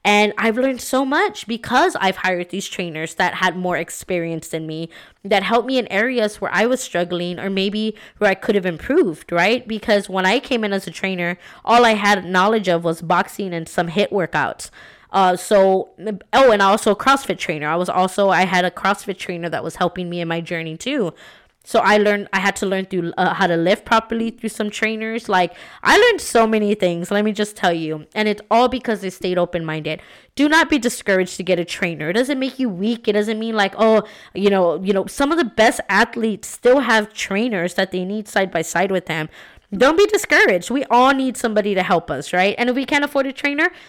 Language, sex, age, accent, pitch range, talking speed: English, female, 20-39, American, 185-230 Hz, 230 wpm